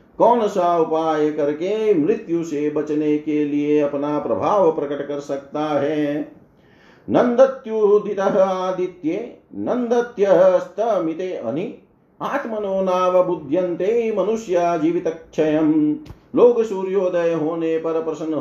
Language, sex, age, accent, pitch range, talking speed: Hindi, male, 50-69, native, 150-195 Hz, 90 wpm